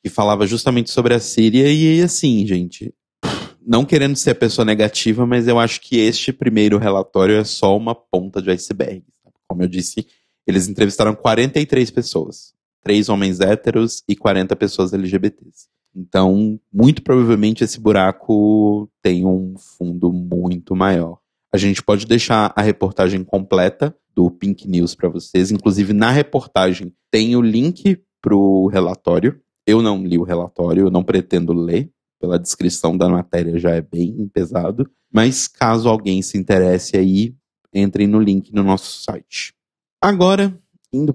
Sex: male